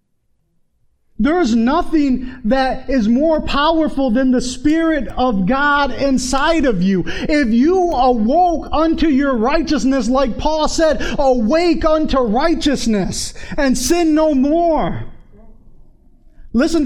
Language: English